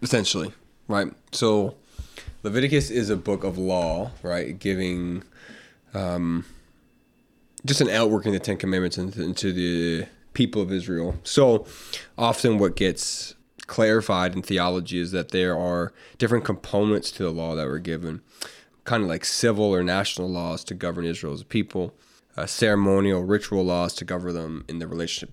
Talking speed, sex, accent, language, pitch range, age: 150 wpm, male, American, English, 90-105 Hz, 20-39